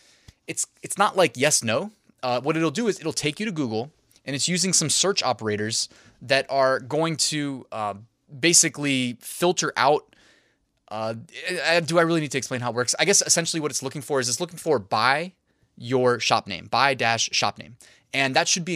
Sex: male